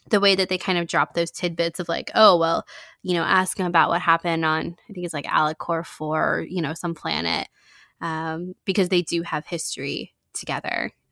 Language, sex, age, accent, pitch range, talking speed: English, female, 20-39, American, 165-190 Hz, 205 wpm